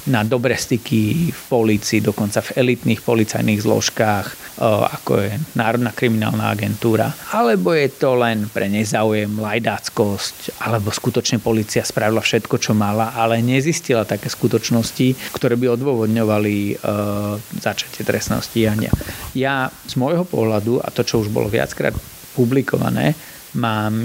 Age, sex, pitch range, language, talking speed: 30-49, male, 110-130 Hz, Slovak, 125 wpm